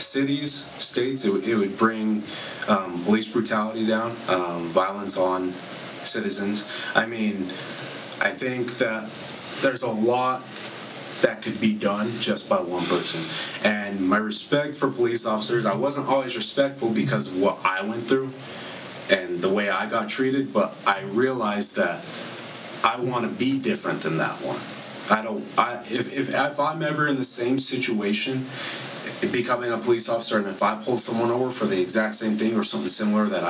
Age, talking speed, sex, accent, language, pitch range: 30-49, 170 wpm, male, American, English, 105-130 Hz